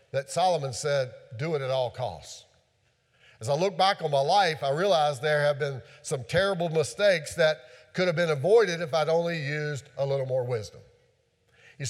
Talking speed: 185 wpm